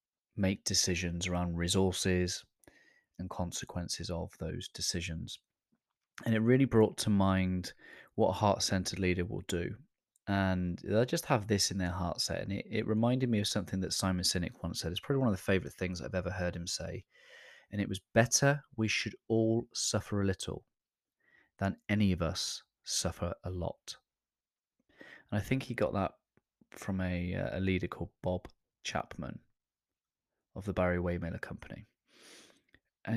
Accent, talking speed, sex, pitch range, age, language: British, 165 wpm, male, 90-110 Hz, 20-39, English